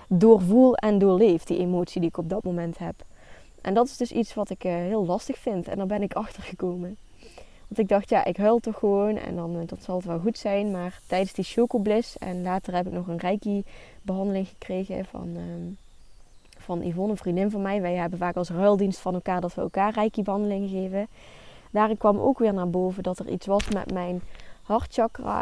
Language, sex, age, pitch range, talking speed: Dutch, female, 20-39, 180-210 Hz, 210 wpm